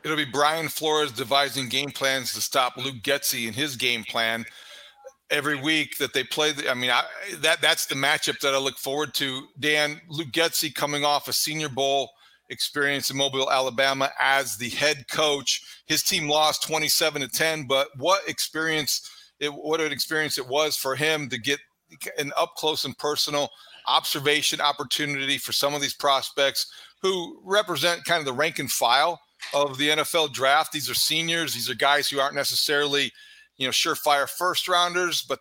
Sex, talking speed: male, 180 wpm